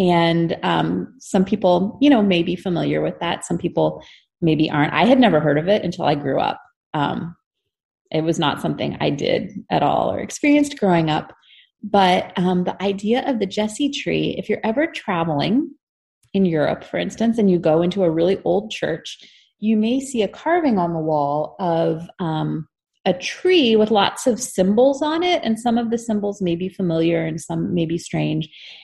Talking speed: 195 wpm